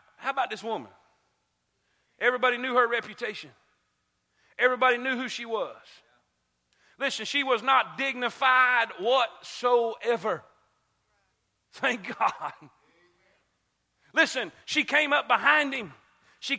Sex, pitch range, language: male, 245-305 Hz, English